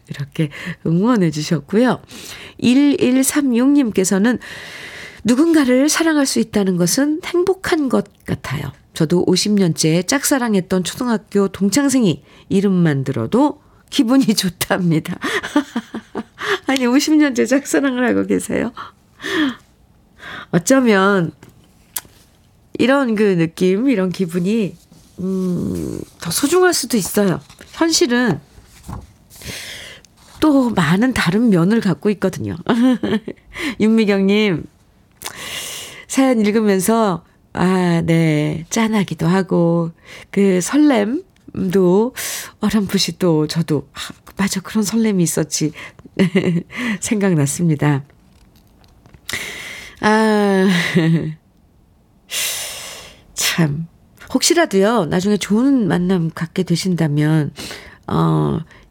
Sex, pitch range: female, 175-250 Hz